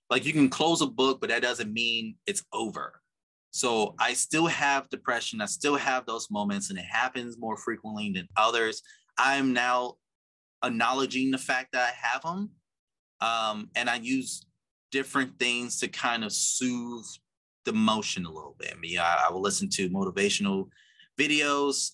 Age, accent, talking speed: 30-49, American, 170 wpm